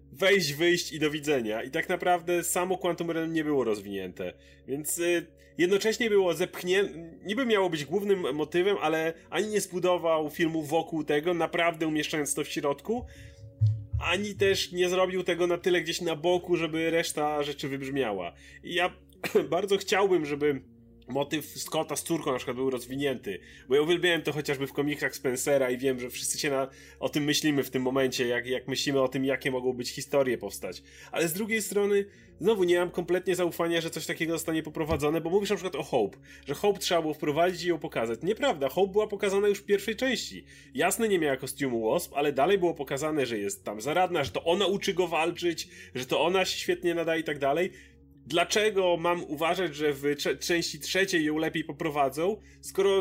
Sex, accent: male, native